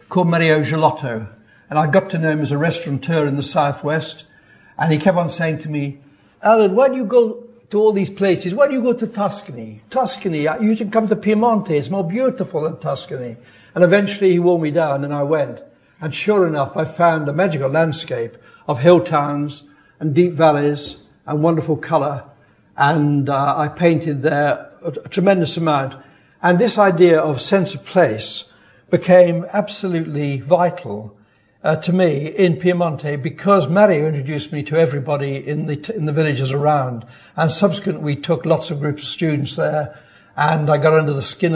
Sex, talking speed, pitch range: male, 180 wpm, 145-175 Hz